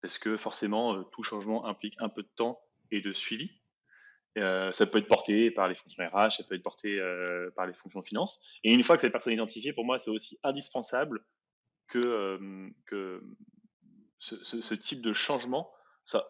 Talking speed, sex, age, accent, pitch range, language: 205 wpm, male, 20-39, French, 110-125 Hz, French